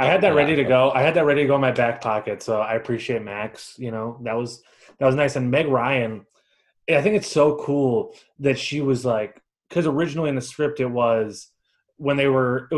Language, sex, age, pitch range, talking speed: English, male, 20-39, 115-145 Hz, 235 wpm